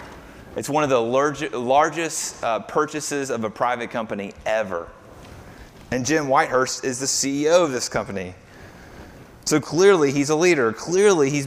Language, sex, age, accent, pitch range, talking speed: English, male, 30-49, American, 110-170 Hz, 145 wpm